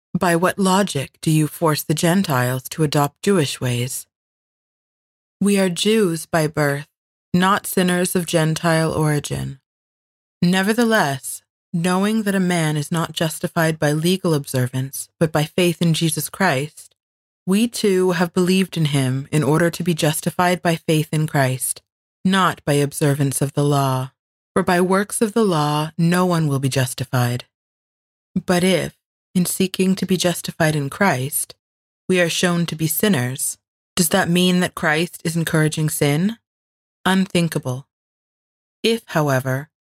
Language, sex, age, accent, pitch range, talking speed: English, female, 30-49, American, 135-180 Hz, 145 wpm